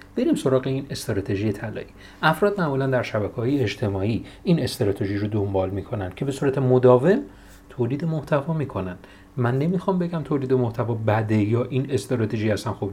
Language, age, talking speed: Persian, 40-59, 155 wpm